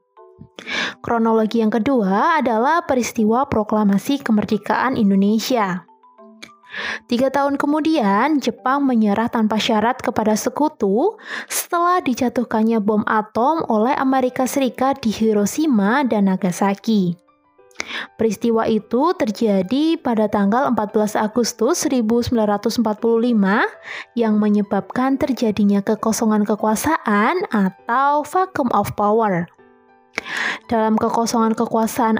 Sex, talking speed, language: female, 90 wpm, Indonesian